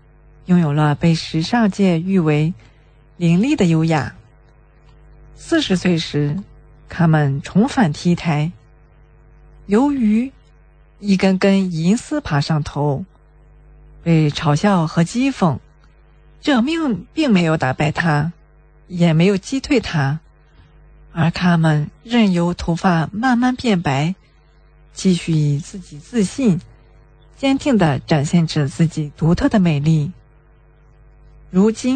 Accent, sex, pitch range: Chinese, female, 150-205 Hz